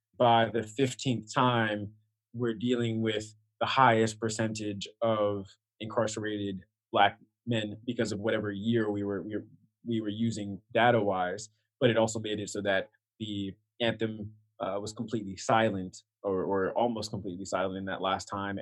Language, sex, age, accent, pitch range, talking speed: English, male, 20-39, American, 105-120 Hz, 150 wpm